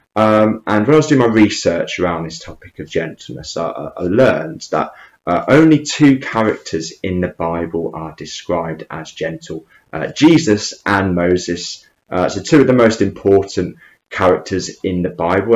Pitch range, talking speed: 90-115 Hz, 165 wpm